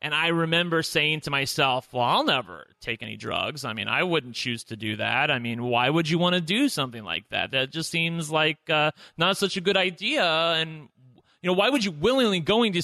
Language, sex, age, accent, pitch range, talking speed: English, male, 30-49, American, 150-205 Hz, 235 wpm